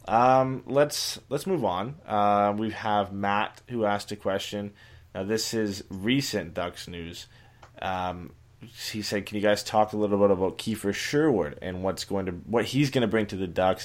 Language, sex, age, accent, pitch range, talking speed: English, male, 20-39, American, 95-115 Hz, 190 wpm